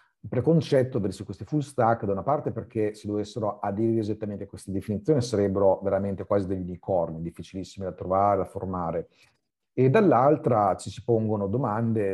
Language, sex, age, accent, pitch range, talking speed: Italian, male, 40-59, native, 95-120 Hz, 160 wpm